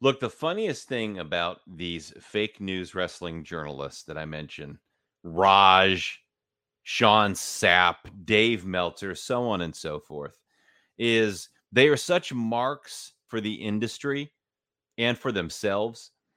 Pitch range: 100-135 Hz